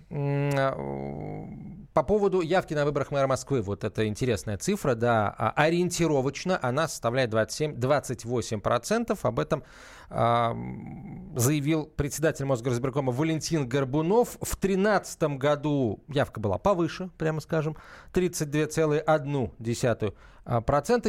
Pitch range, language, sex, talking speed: 115-160 Hz, Russian, male, 95 wpm